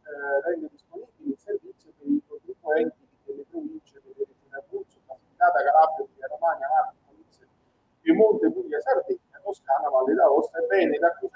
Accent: native